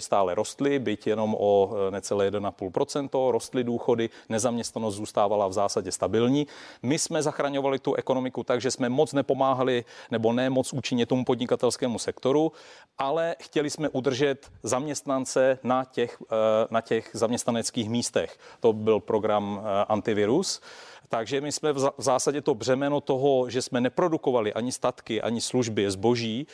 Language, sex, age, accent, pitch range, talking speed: Czech, male, 40-59, native, 115-140 Hz, 140 wpm